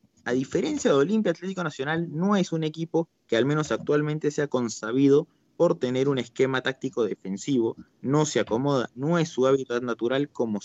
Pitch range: 115-160 Hz